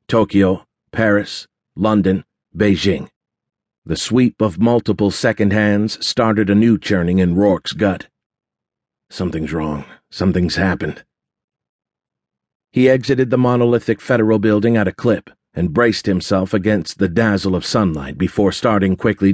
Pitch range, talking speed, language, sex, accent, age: 95-110 Hz, 125 wpm, English, male, American, 50-69